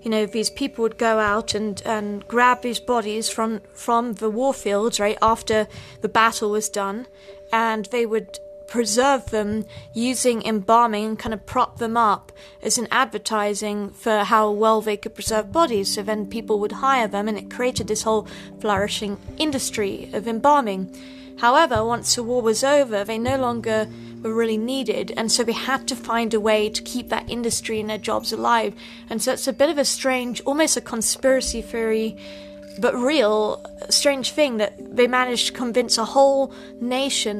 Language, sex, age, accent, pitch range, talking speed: English, female, 30-49, British, 215-245 Hz, 180 wpm